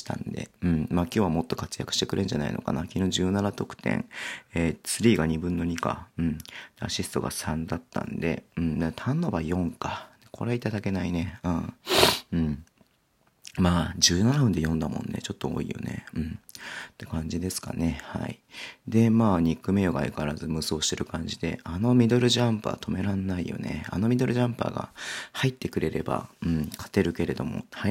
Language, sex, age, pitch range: Japanese, male, 40-59, 80-100 Hz